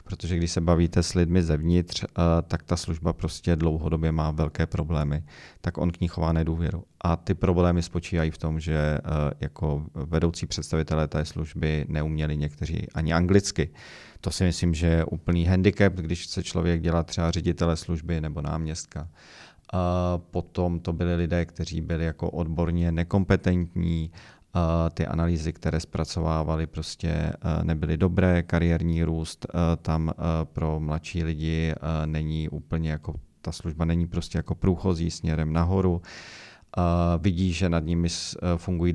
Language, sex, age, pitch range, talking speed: Czech, male, 40-59, 80-90 Hz, 140 wpm